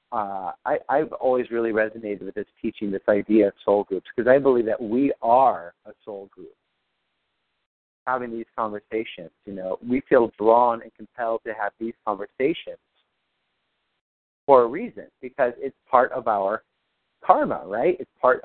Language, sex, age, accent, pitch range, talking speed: English, male, 40-59, American, 105-130 Hz, 160 wpm